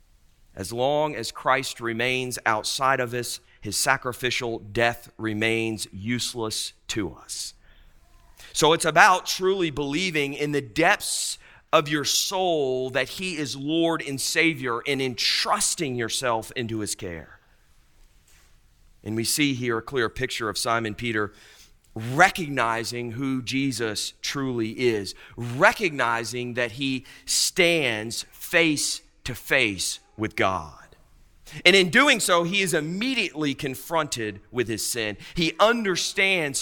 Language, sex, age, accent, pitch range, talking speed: English, male, 40-59, American, 115-160 Hz, 125 wpm